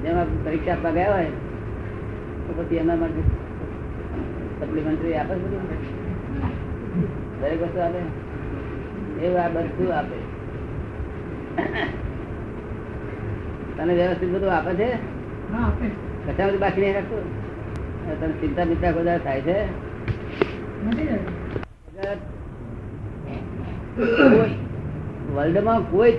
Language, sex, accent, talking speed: Gujarati, female, native, 35 wpm